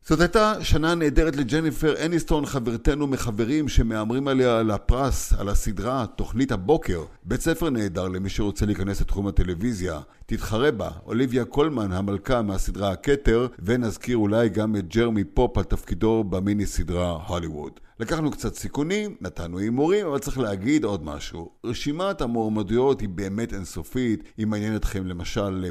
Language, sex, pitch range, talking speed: Hebrew, male, 100-130 Hz, 140 wpm